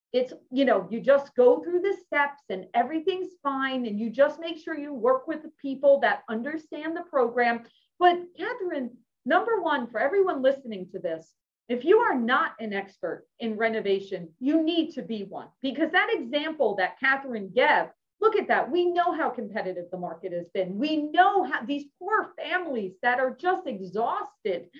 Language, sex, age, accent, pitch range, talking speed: English, female, 40-59, American, 230-345 Hz, 180 wpm